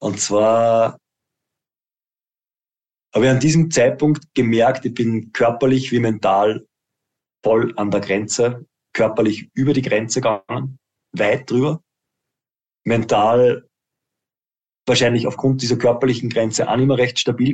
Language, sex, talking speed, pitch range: German, male, 120 wpm, 110-130 Hz